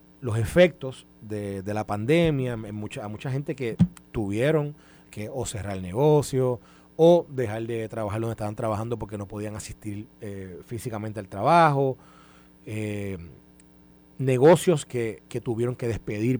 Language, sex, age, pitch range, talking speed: Spanish, male, 30-49, 100-140 Hz, 145 wpm